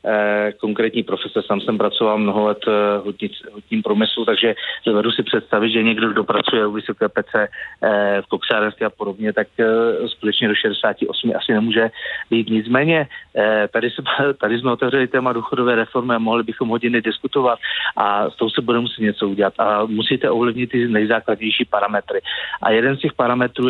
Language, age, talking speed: Czech, 30-49, 165 wpm